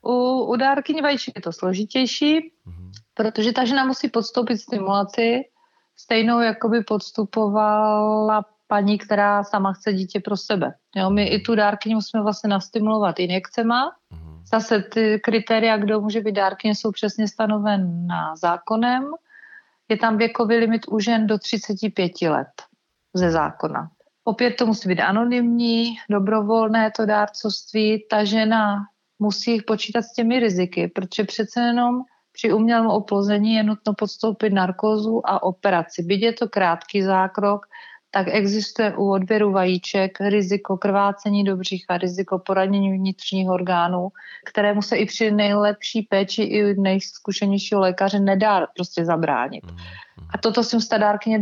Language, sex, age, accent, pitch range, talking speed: Czech, female, 40-59, native, 200-225 Hz, 135 wpm